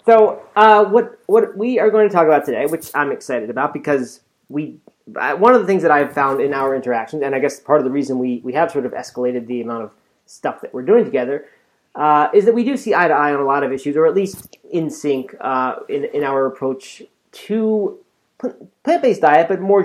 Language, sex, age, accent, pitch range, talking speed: English, male, 30-49, American, 135-190 Hz, 235 wpm